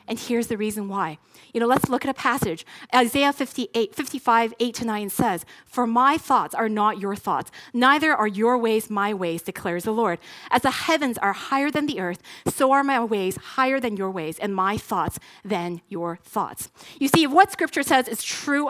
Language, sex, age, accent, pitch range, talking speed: English, female, 30-49, American, 215-285 Hz, 205 wpm